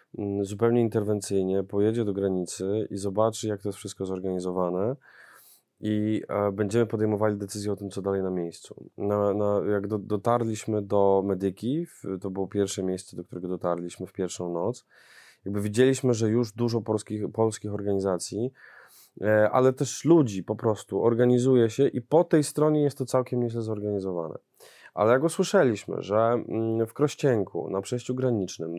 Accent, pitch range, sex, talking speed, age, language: native, 100-125 Hz, male, 145 wpm, 20-39, Polish